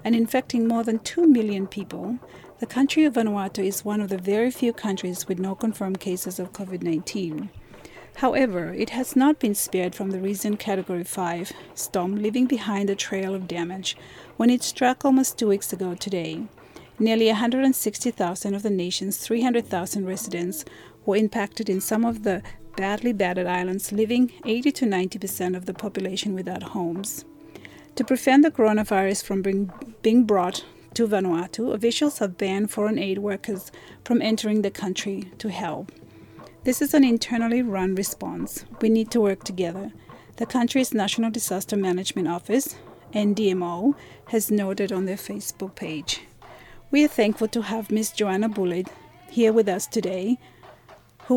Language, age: English, 40-59